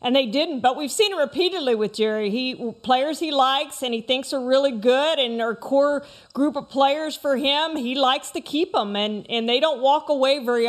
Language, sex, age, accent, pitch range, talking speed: English, female, 40-59, American, 230-285 Hz, 225 wpm